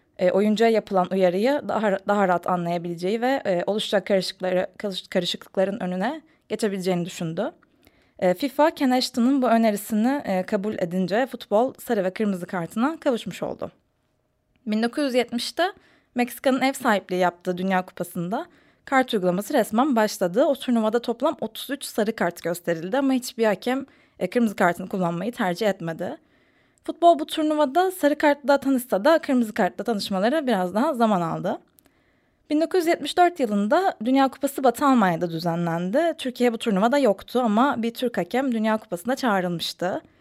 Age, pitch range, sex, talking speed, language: 20-39, 185-265 Hz, female, 135 wpm, Turkish